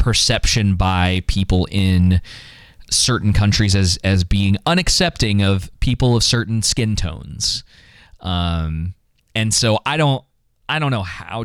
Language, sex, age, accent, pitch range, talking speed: English, male, 20-39, American, 90-110 Hz, 130 wpm